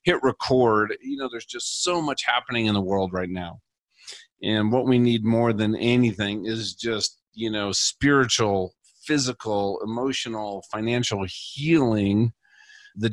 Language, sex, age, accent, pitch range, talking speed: English, male, 40-59, American, 105-135 Hz, 140 wpm